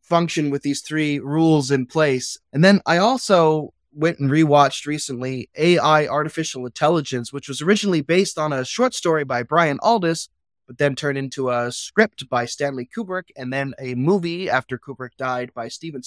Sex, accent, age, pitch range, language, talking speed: male, American, 20-39, 130-195 Hz, English, 175 wpm